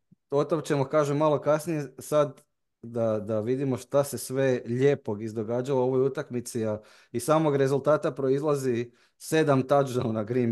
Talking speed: 145 wpm